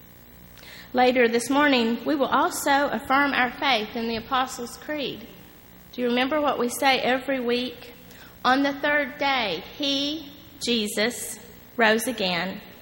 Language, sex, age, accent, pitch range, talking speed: English, female, 40-59, American, 225-295 Hz, 135 wpm